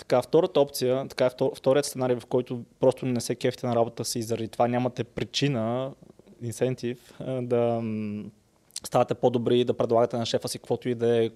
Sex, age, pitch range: male, 20-39, 120-145 Hz